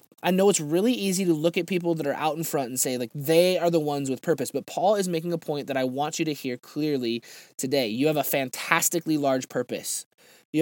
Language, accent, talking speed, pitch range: English, American, 250 wpm, 135-175 Hz